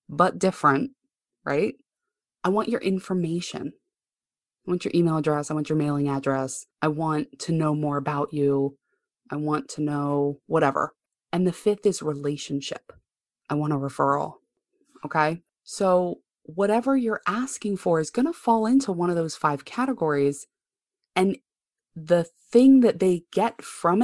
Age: 20-39